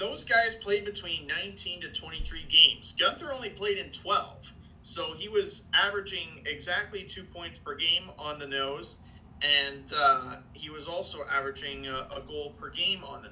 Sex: male